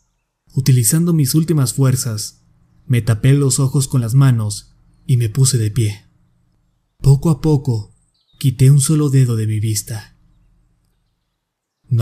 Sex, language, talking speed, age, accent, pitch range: male, Spanish, 135 wpm, 30-49, Mexican, 105-135 Hz